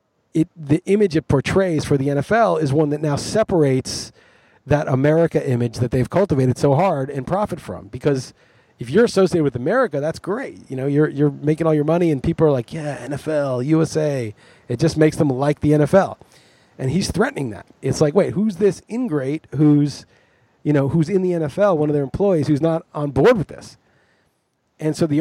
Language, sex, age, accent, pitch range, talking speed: English, male, 30-49, American, 140-175 Hz, 200 wpm